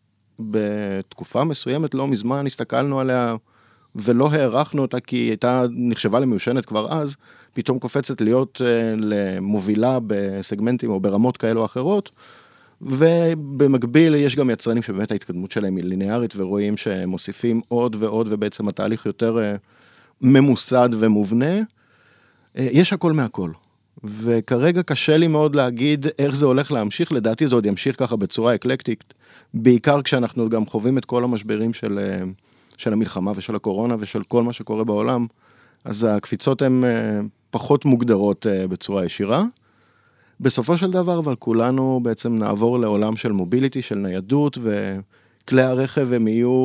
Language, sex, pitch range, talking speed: Hebrew, male, 105-130 Hz, 130 wpm